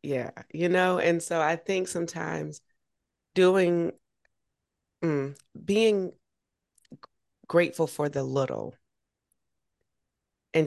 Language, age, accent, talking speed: English, 30-49, American, 90 wpm